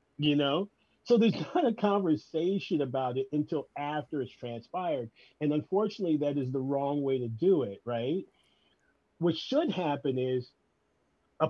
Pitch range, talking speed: 125-155 Hz, 150 wpm